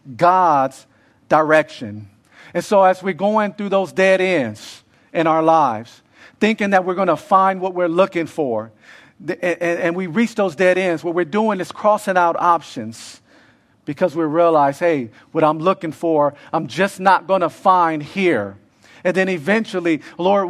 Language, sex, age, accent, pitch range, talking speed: English, male, 50-69, American, 150-185 Hz, 165 wpm